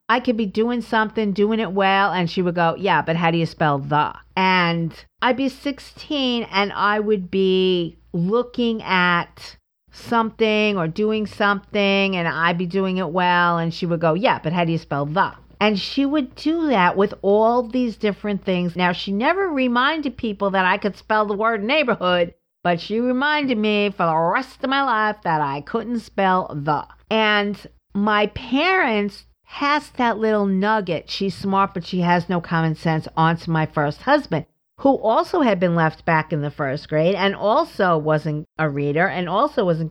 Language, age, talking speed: English, 50-69, 185 wpm